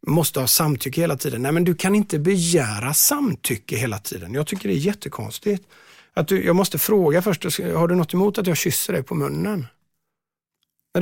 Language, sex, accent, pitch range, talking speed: Swedish, male, native, 130-170 Hz, 195 wpm